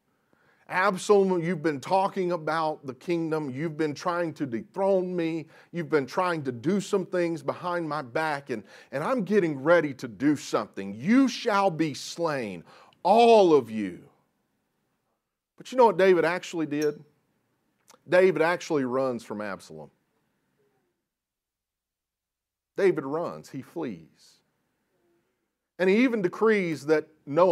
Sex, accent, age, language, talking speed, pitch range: male, American, 40-59, English, 130 wpm, 130-180 Hz